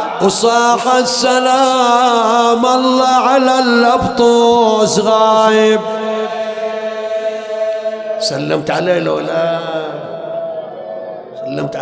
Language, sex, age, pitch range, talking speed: English, male, 50-69, 215-240 Hz, 50 wpm